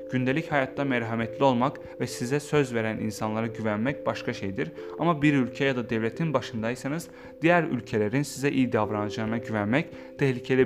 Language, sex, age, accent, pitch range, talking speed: Turkish, male, 30-49, native, 105-145 Hz, 145 wpm